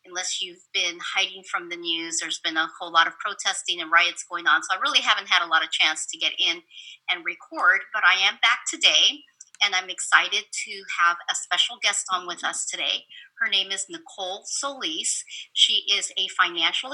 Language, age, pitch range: English, 30-49, 175-280 Hz